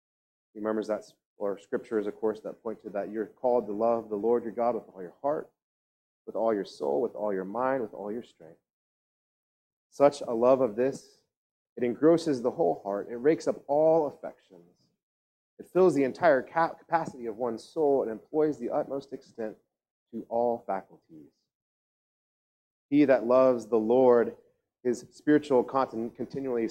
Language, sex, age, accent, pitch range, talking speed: English, male, 30-49, American, 110-140 Hz, 170 wpm